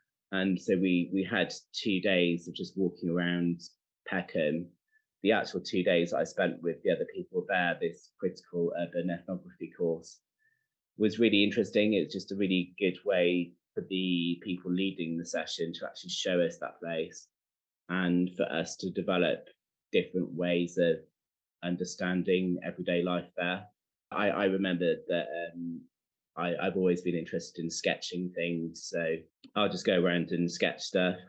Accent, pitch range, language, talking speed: British, 85-95 Hz, English, 155 wpm